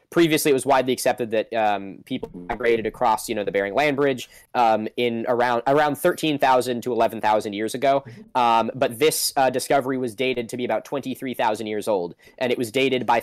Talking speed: 195 wpm